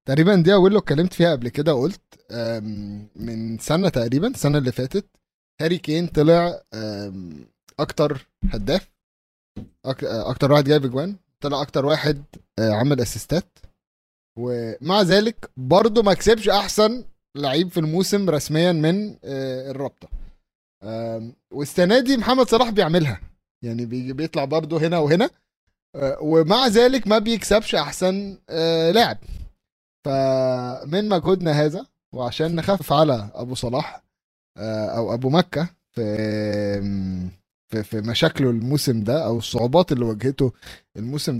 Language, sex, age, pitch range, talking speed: Arabic, male, 20-39, 120-165 Hz, 115 wpm